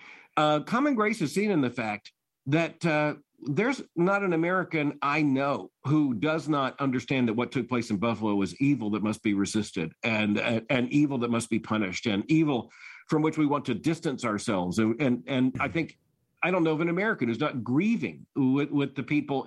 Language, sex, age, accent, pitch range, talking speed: English, male, 50-69, American, 125-160 Hz, 205 wpm